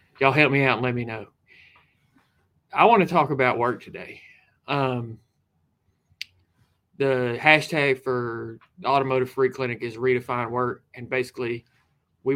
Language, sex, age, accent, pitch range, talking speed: English, male, 30-49, American, 115-130 Hz, 135 wpm